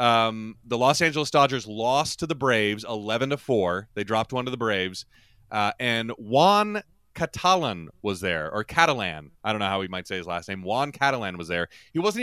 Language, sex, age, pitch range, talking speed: English, male, 30-49, 105-145 Hz, 205 wpm